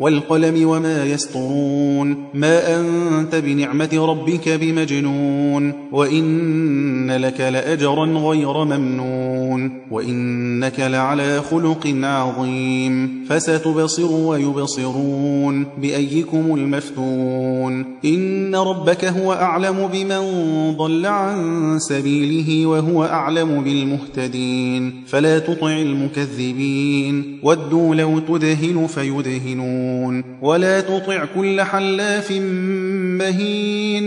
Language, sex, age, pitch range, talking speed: Persian, male, 30-49, 140-165 Hz, 80 wpm